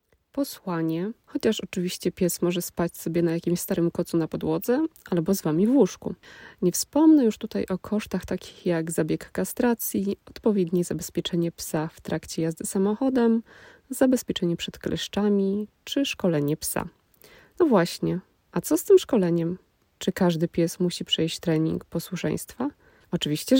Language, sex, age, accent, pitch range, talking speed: Polish, female, 20-39, native, 170-225 Hz, 140 wpm